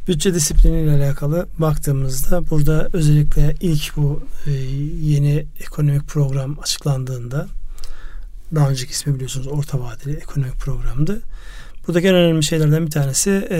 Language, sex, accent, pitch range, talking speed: Turkish, male, native, 145-165 Hz, 115 wpm